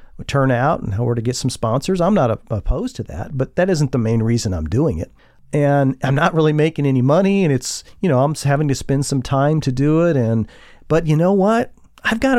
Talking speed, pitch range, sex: 240 wpm, 120-160 Hz, male